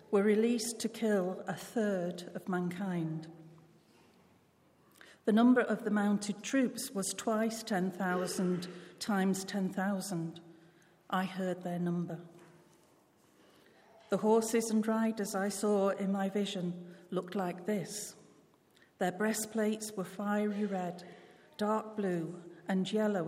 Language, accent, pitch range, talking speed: English, British, 180-210 Hz, 115 wpm